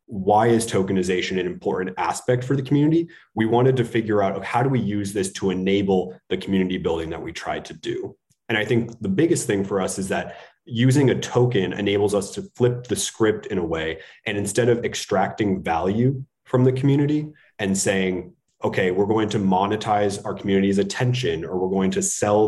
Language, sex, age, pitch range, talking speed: English, male, 30-49, 95-120 Hz, 200 wpm